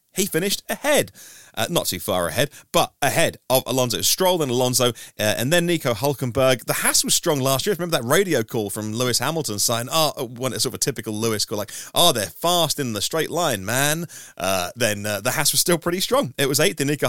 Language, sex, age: English, male, 30-49